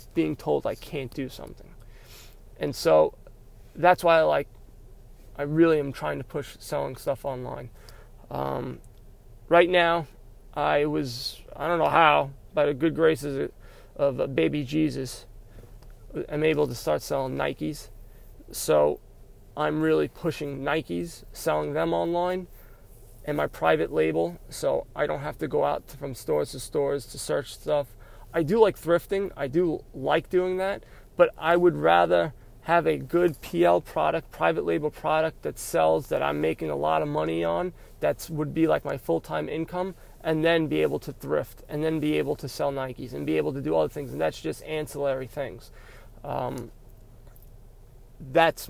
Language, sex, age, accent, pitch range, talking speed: English, male, 20-39, American, 100-155 Hz, 170 wpm